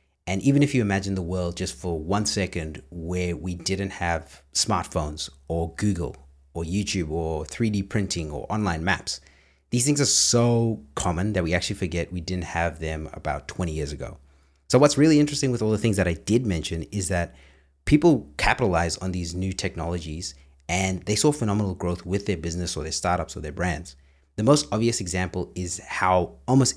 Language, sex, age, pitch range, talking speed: English, male, 30-49, 80-105 Hz, 190 wpm